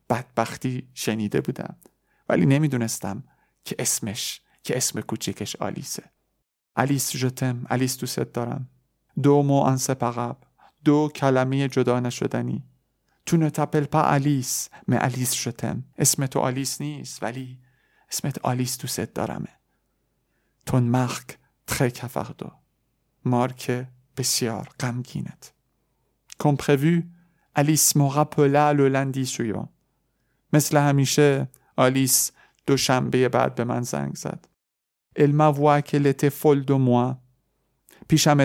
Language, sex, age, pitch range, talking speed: Persian, male, 50-69, 125-145 Hz, 100 wpm